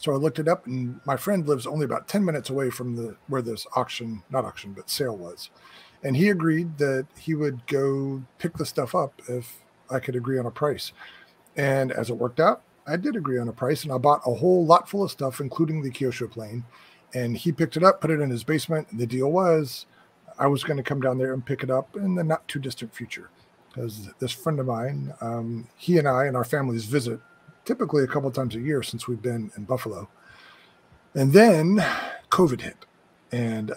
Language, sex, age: English, male, 40-59